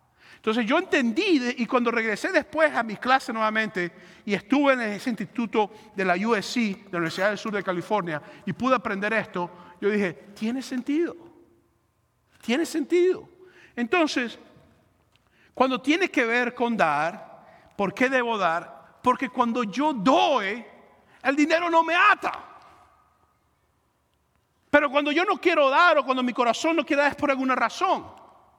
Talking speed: 155 wpm